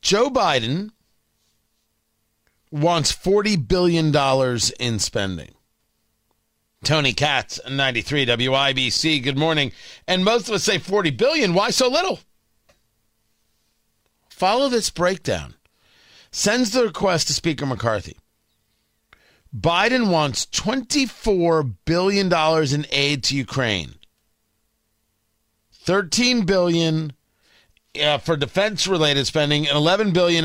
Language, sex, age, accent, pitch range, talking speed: English, male, 40-59, American, 110-185 Hz, 100 wpm